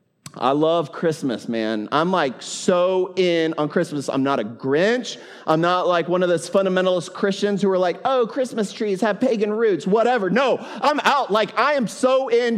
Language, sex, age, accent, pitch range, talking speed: English, male, 30-49, American, 130-200 Hz, 190 wpm